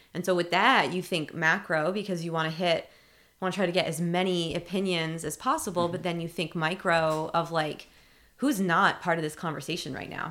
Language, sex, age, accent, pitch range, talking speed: English, female, 20-39, American, 155-180 Hz, 215 wpm